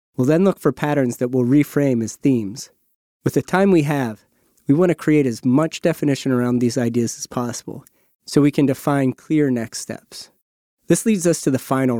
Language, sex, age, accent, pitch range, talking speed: English, male, 30-49, American, 120-150 Hz, 200 wpm